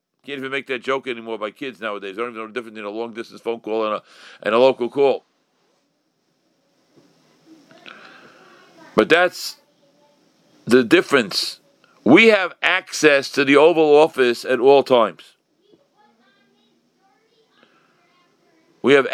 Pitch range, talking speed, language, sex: 130-185 Hz, 130 wpm, English, male